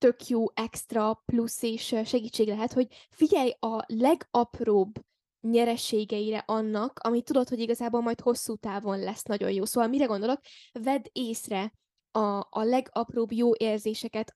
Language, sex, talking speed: Hungarian, female, 140 wpm